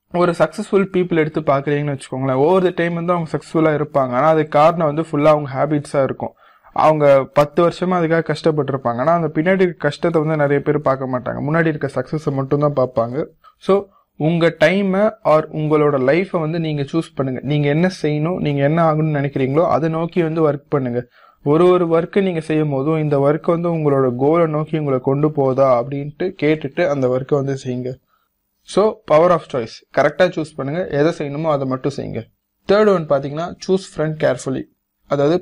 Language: Tamil